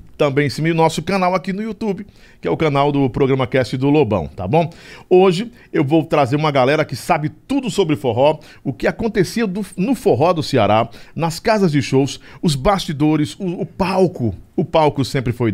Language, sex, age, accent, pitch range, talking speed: Portuguese, male, 50-69, Brazilian, 120-165 Hz, 195 wpm